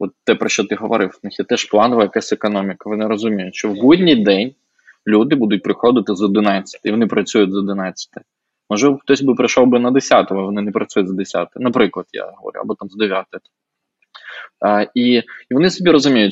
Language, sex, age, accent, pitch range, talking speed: Ukrainian, male, 20-39, native, 105-135 Hz, 200 wpm